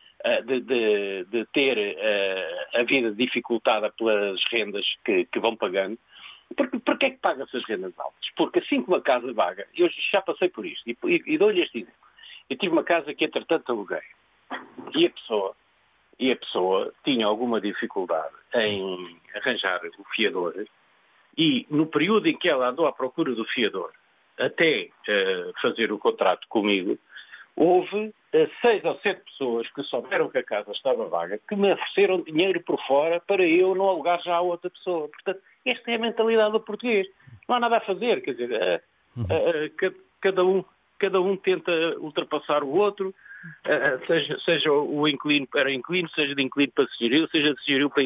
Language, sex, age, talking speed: Portuguese, male, 50-69, 170 wpm